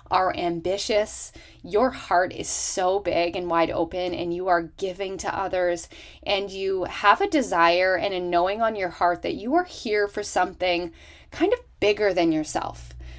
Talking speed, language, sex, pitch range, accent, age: 175 wpm, English, female, 175-245 Hz, American, 20-39